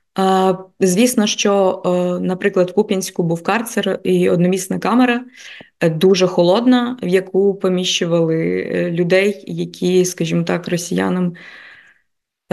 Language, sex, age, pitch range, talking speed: Ukrainian, female, 20-39, 175-195 Hz, 95 wpm